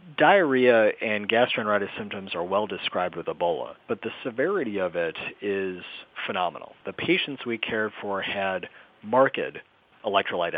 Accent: American